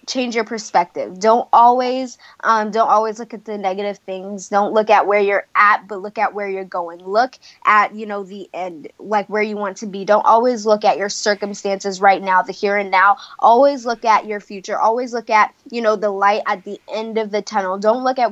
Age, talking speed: 20-39, 230 wpm